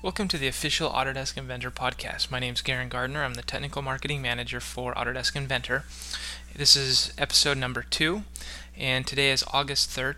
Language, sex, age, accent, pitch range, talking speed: English, male, 20-39, American, 125-145 Hz, 175 wpm